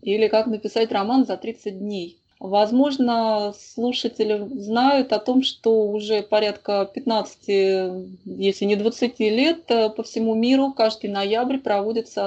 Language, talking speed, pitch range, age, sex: Russian, 125 wpm, 205-235 Hz, 20-39, female